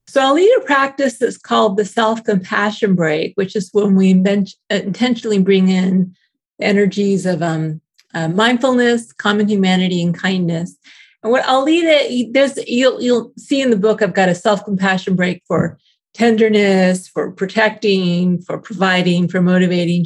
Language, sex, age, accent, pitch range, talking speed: English, female, 40-59, American, 185-225 Hz, 155 wpm